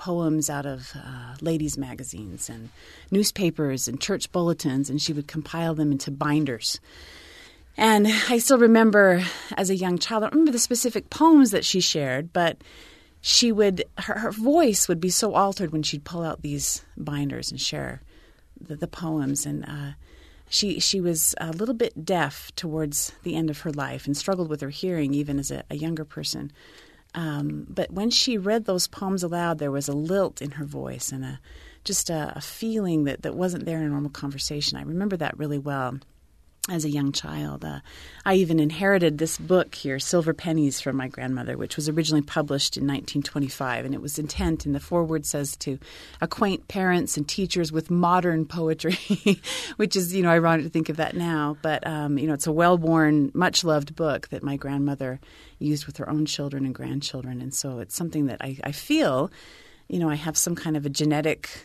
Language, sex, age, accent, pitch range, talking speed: English, female, 30-49, American, 140-180 Hz, 195 wpm